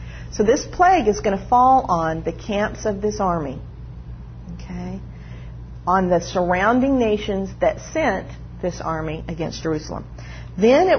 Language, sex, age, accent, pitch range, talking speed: English, female, 50-69, American, 155-225 Hz, 140 wpm